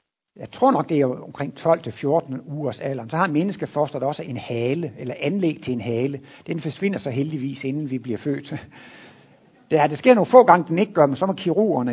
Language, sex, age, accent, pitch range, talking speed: Danish, male, 60-79, native, 140-180 Hz, 215 wpm